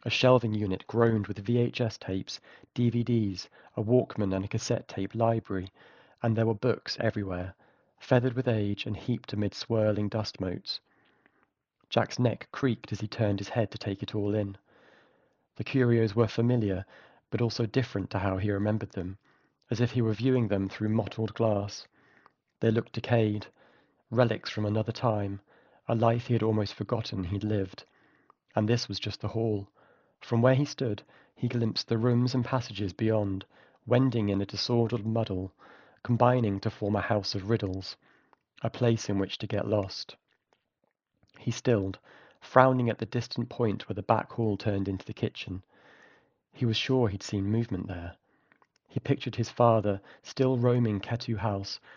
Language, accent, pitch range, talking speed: English, British, 100-120 Hz, 165 wpm